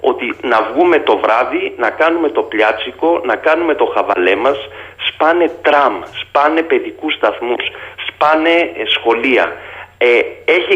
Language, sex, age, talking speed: Greek, male, 40-59, 130 wpm